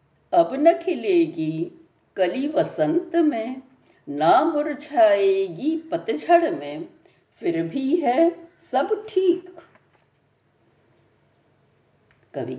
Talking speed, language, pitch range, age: 65 wpm, Hindi, 250-350 Hz, 60-79